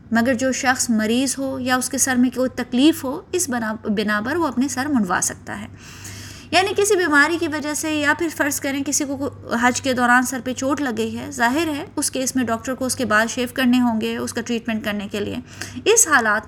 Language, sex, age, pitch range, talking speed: Urdu, female, 20-39, 230-295 Hz, 235 wpm